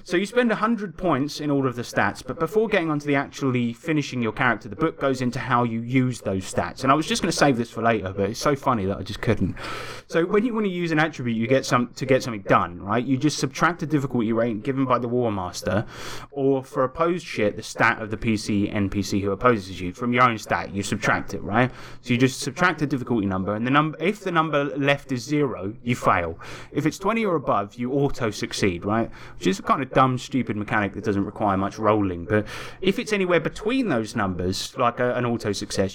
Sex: male